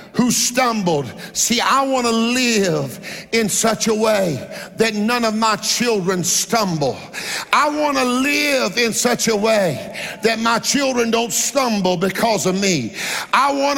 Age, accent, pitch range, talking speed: 50-69, American, 210-260 Hz, 150 wpm